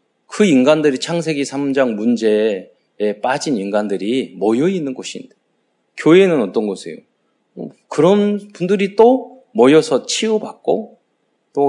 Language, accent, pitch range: Korean, native, 115-175 Hz